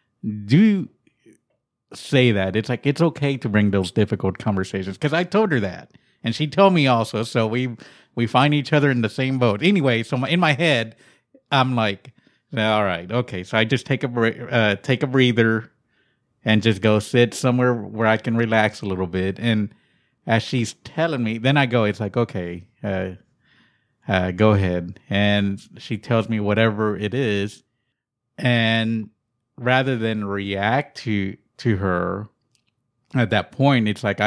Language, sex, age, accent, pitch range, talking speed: English, male, 50-69, American, 100-125 Hz, 170 wpm